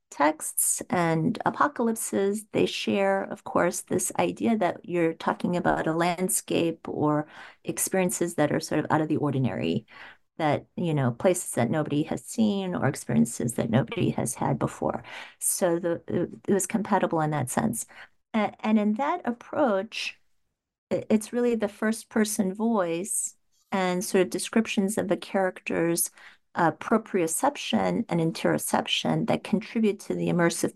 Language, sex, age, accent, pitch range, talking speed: English, female, 40-59, American, 155-205 Hz, 145 wpm